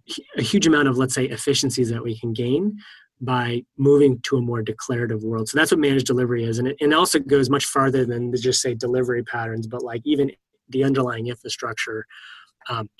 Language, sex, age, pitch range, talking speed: English, male, 20-39, 115-135 Hz, 195 wpm